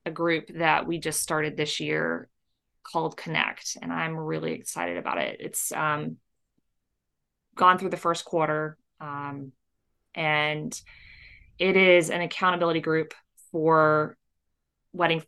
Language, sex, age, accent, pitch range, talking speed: English, female, 20-39, American, 150-170 Hz, 125 wpm